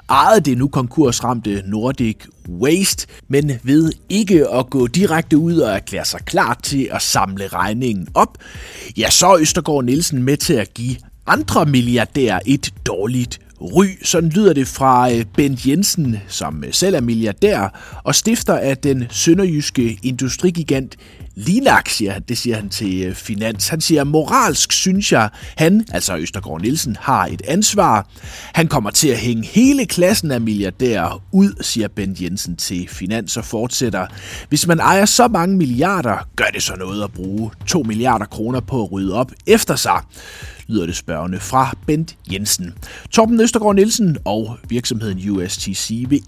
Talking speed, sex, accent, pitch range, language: 160 wpm, male, native, 100-165 Hz, Danish